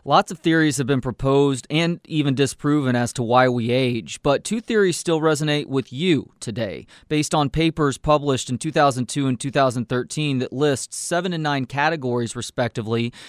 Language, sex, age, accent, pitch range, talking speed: English, male, 30-49, American, 130-155 Hz, 165 wpm